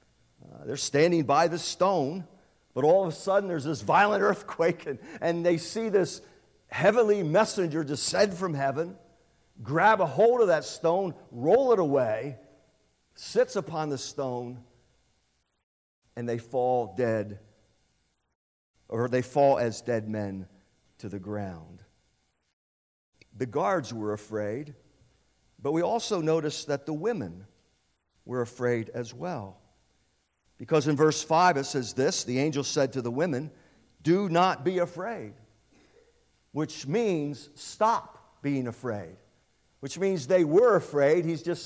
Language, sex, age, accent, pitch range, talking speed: English, male, 50-69, American, 115-180 Hz, 135 wpm